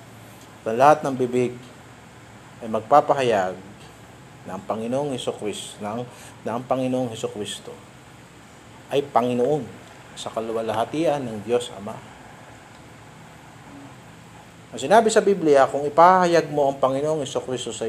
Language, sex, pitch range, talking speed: Filipino, male, 120-160 Hz, 100 wpm